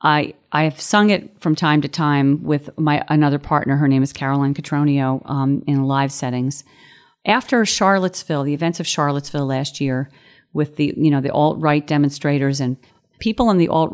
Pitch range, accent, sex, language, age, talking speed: 140-165 Hz, American, female, English, 40-59, 185 wpm